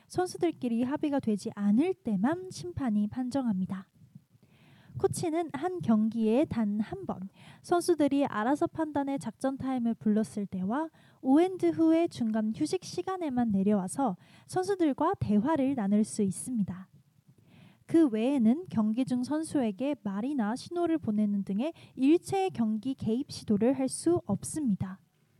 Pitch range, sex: 210-315 Hz, female